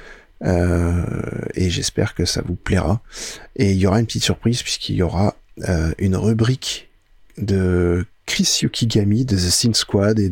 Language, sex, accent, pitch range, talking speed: French, male, French, 95-115 Hz, 165 wpm